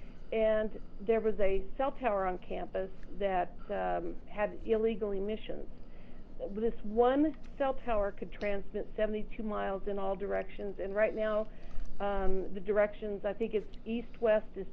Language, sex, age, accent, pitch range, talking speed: English, female, 50-69, American, 195-225 Hz, 145 wpm